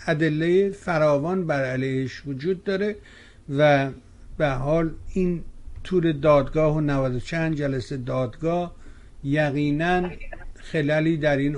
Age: 60-79